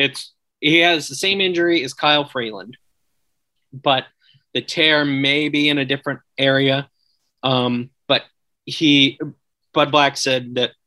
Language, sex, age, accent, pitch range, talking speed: English, male, 30-49, American, 125-145 Hz, 140 wpm